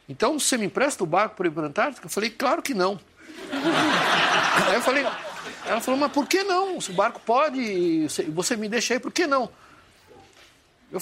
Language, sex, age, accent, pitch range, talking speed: Portuguese, male, 60-79, Brazilian, 180-260 Hz, 200 wpm